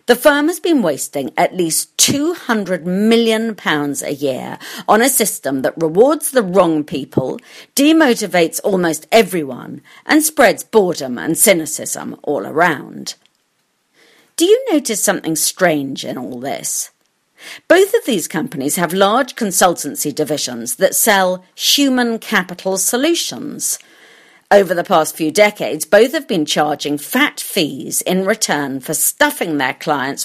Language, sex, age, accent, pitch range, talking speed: English, female, 40-59, British, 155-245 Hz, 135 wpm